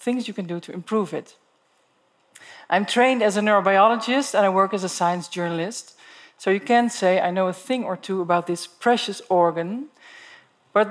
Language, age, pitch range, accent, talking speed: English, 40-59, 180-235 Hz, Dutch, 185 wpm